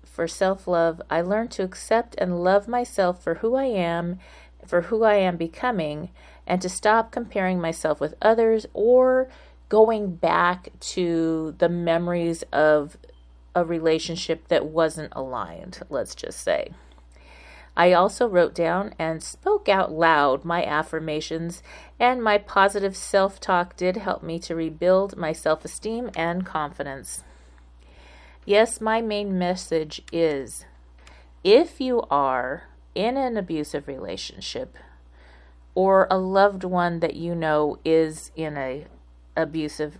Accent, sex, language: American, female, English